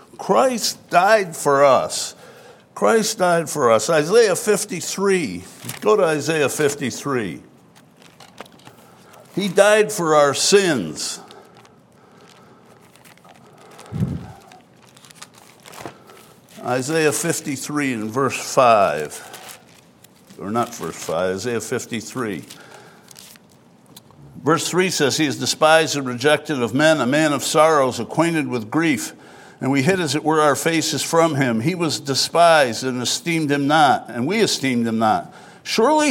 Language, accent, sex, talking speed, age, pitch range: English, American, male, 115 wpm, 60-79, 140-205 Hz